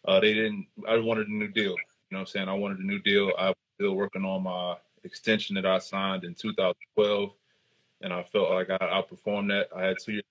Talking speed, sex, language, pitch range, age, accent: 250 wpm, male, English, 95-110 Hz, 20-39, American